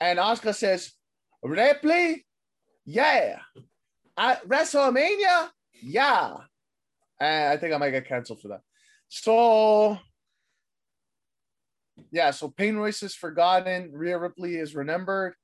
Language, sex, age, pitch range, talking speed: English, male, 20-39, 155-205 Hz, 110 wpm